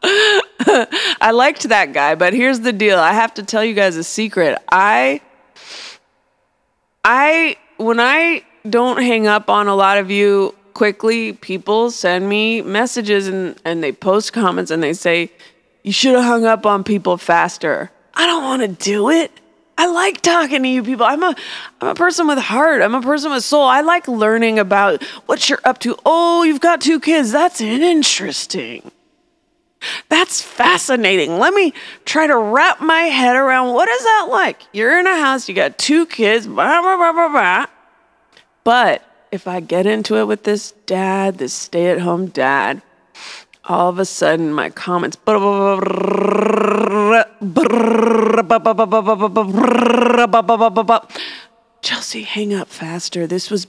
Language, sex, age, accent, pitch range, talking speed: English, female, 20-39, American, 200-275 Hz, 150 wpm